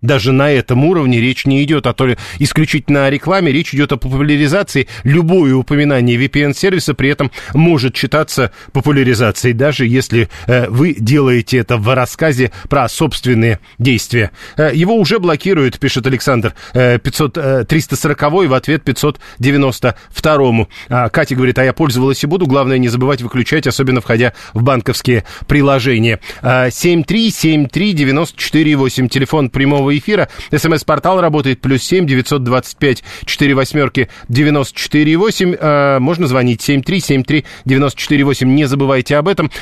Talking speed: 125 wpm